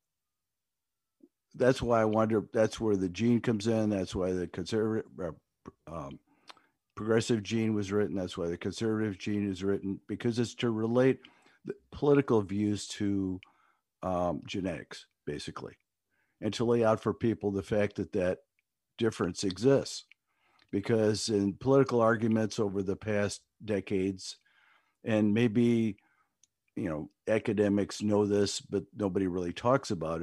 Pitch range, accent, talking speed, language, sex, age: 100-115 Hz, American, 135 wpm, English, male, 50-69